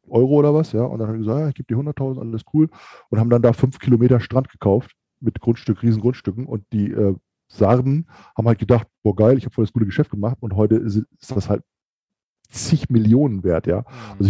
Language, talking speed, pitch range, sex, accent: German, 230 wpm, 105-130 Hz, male, German